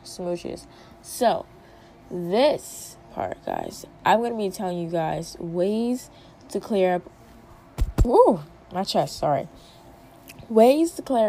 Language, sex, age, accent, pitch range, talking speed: English, female, 10-29, American, 170-205 Hz, 115 wpm